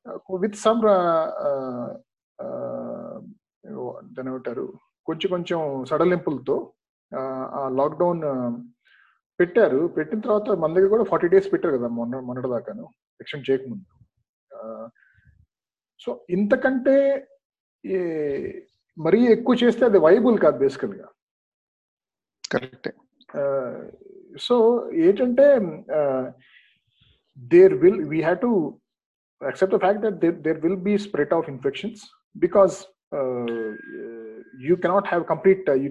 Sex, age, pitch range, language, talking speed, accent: male, 50-69, 145-215 Hz, Telugu, 95 wpm, native